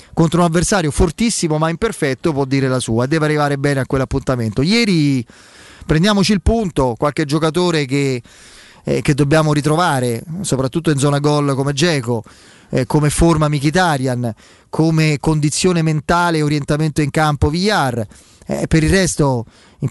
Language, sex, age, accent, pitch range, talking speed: Italian, male, 30-49, native, 135-165 Hz, 150 wpm